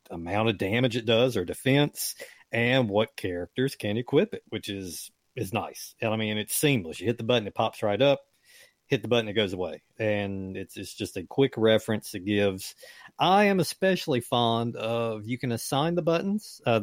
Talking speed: 200 wpm